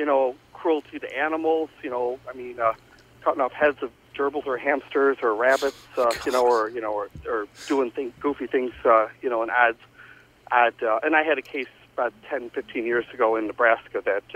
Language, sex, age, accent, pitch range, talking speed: English, male, 50-69, American, 115-155 Hz, 215 wpm